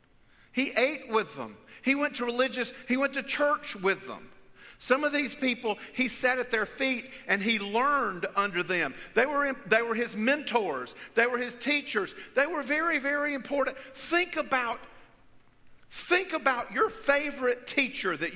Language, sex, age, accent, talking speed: English, male, 50-69, American, 165 wpm